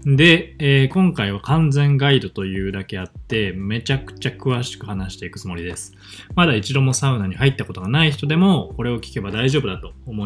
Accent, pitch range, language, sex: native, 95-140 Hz, Japanese, male